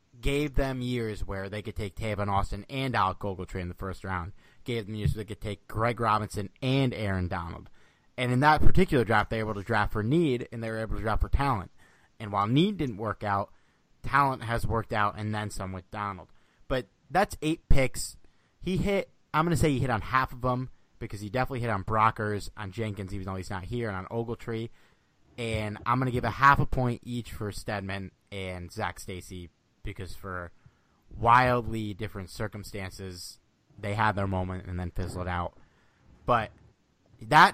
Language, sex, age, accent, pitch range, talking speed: English, male, 30-49, American, 100-130 Hz, 200 wpm